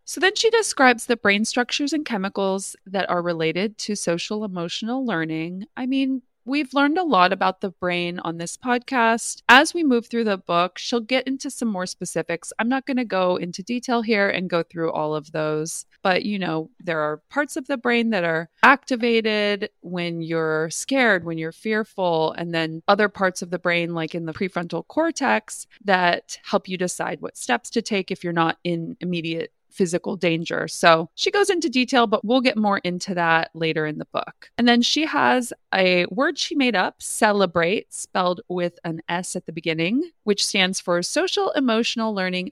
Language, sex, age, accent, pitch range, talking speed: English, female, 30-49, American, 175-235 Hz, 195 wpm